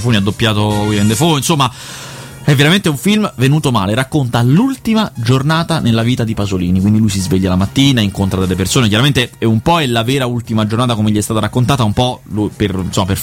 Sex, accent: male, native